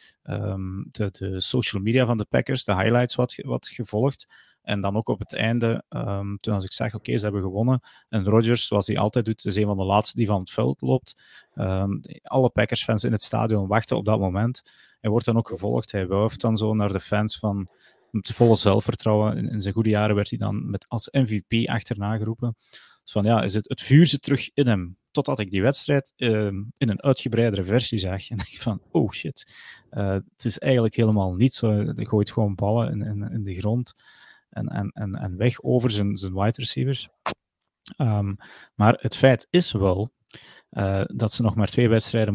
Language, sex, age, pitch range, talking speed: Dutch, male, 30-49, 100-120 Hz, 210 wpm